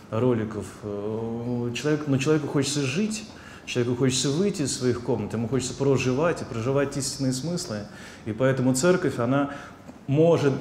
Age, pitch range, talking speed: 20-39, 110-135 Hz, 135 wpm